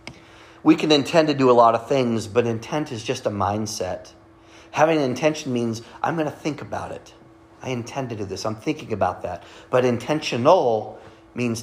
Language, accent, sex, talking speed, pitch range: English, American, male, 190 wpm, 110-135 Hz